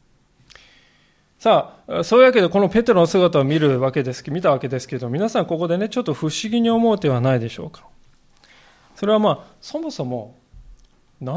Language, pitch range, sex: Japanese, 130-205 Hz, male